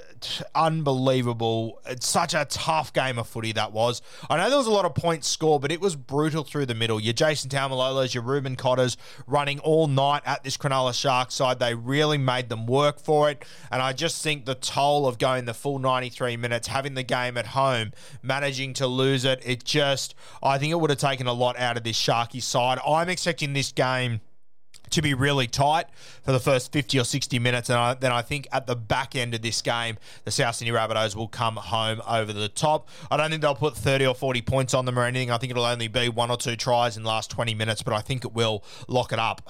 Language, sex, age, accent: English, male, 20-39, Australian